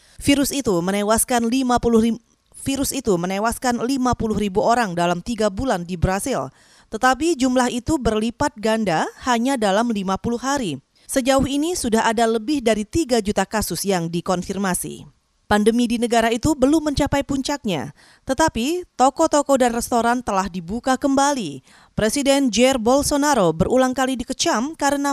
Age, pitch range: 30-49, 215-275 Hz